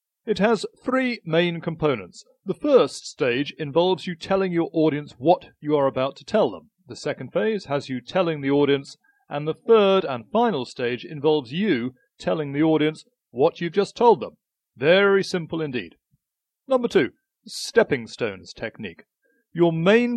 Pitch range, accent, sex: 140-195 Hz, British, male